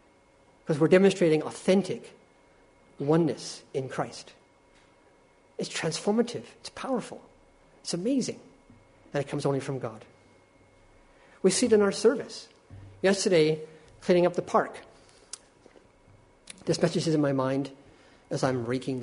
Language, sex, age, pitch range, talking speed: English, male, 50-69, 130-185 Hz, 125 wpm